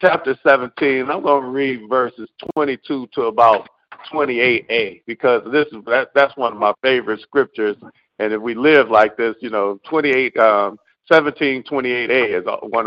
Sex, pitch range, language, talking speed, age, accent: male, 115-170 Hz, English, 175 wpm, 50-69, American